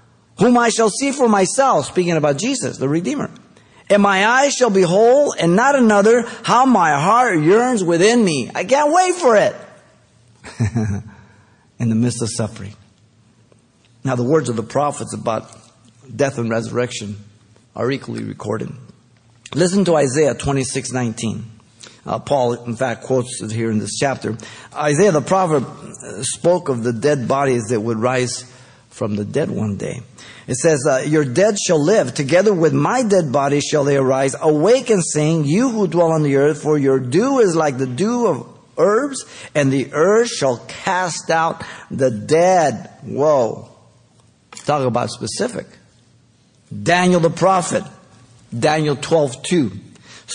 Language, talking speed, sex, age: English, 155 wpm, male, 50-69